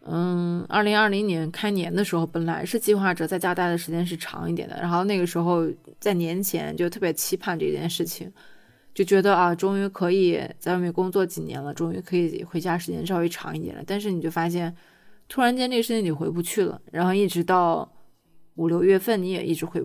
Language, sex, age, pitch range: Chinese, female, 20-39, 165-195 Hz